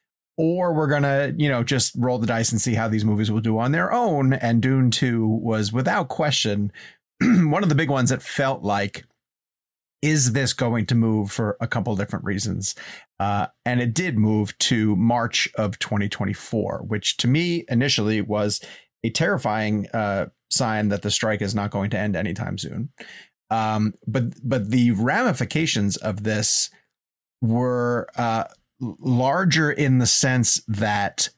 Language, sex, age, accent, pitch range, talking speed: English, male, 30-49, American, 105-130 Hz, 165 wpm